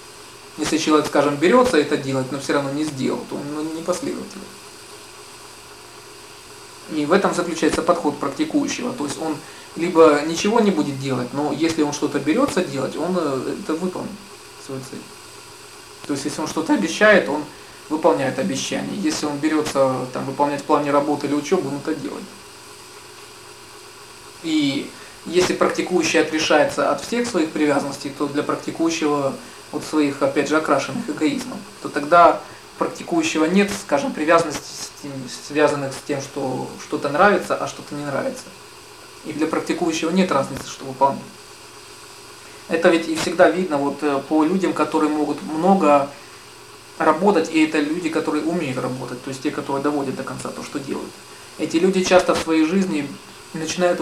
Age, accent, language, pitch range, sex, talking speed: 20-39, native, Russian, 145-165 Hz, male, 155 wpm